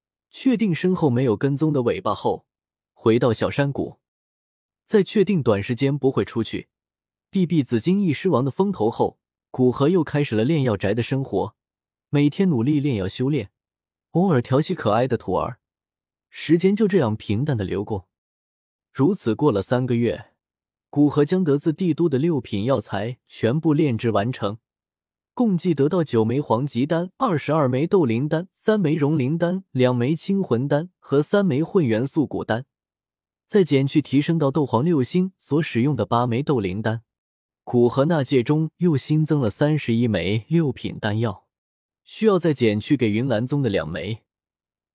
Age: 20-39